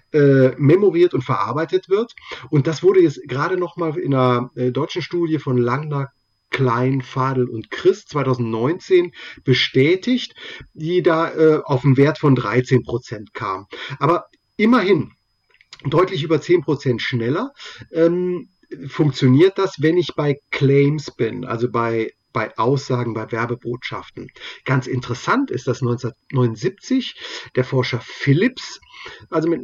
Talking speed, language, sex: 130 wpm, German, male